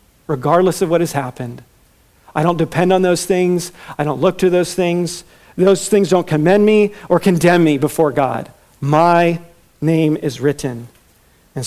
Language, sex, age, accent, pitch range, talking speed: English, male, 50-69, American, 140-165 Hz, 165 wpm